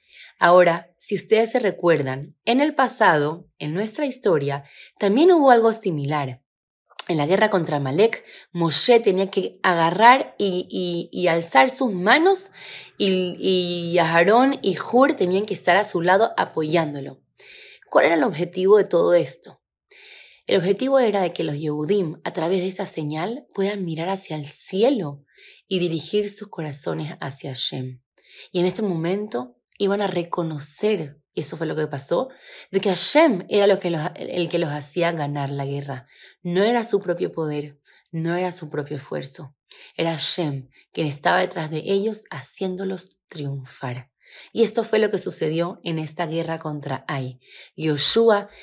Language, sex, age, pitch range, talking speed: Spanish, female, 20-39, 155-210 Hz, 155 wpm